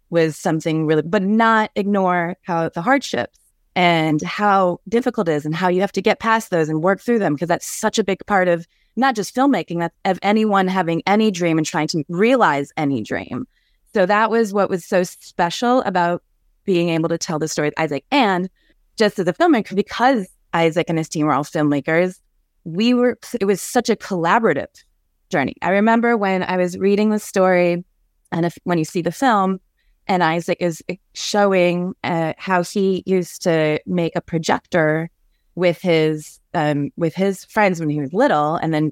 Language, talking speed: English, 190 wpm